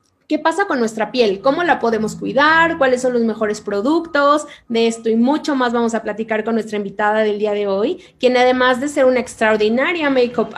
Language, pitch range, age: Spanish, 220-270 Hz, 20-39